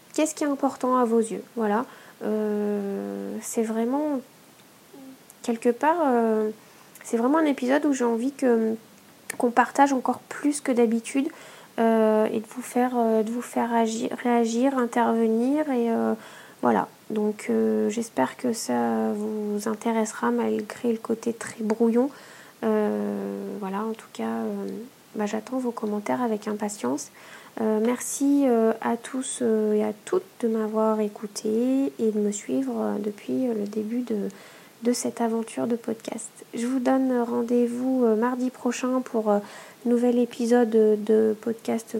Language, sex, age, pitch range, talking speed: French, female, 20-39, 215-245 Hz, 140 wpm